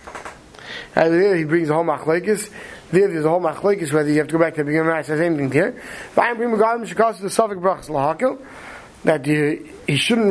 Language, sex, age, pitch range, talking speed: English, male, 20-39, 155-200 Hz, 155 wpm